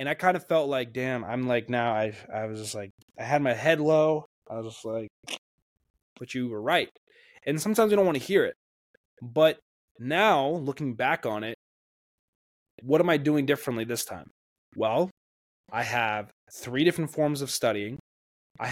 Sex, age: male, 20-39